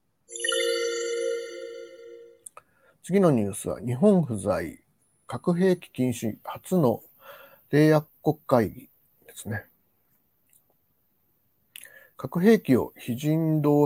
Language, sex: Japanese, male